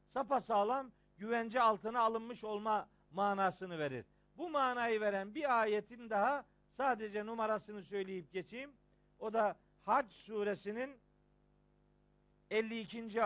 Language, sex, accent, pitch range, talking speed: Turkish, male, native, 200-245 Hz, 100 wpm